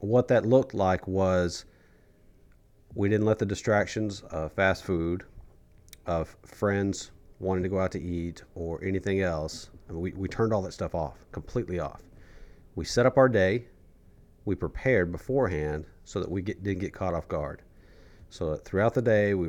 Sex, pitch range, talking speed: male, 85-100 Hz, 170 wpm